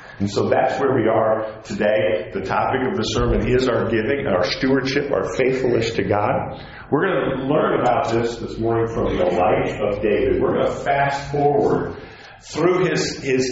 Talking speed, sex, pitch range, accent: 185 wpm, male, 115-155 Hz, American